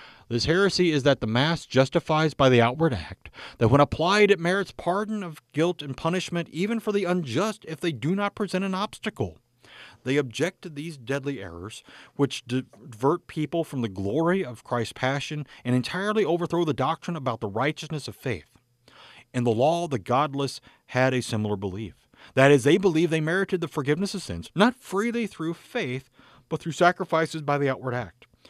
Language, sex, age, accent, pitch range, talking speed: English, male, 40-59, American, 120-170 Hz, 185 wpm